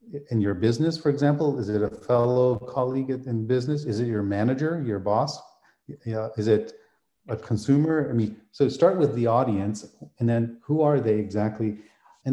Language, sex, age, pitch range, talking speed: Arabic, male, 40-59, 110-145 Hz, 180 wpm